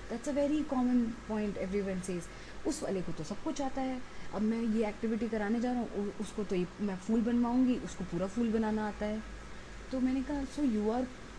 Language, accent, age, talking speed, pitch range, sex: Hindi, native, 20-39, 210 wpm, 200-270 Hz, female